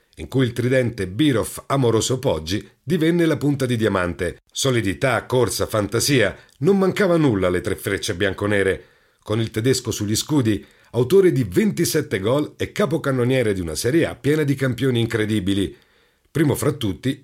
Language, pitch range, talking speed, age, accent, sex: Italian, 110-155 Hz, 155 wpm, 50-69, native, male